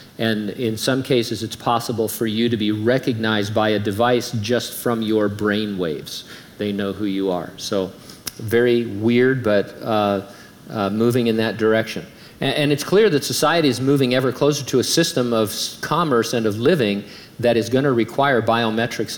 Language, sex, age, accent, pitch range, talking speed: English, male, 50-69, American, 115-135 Hz, 180 wpm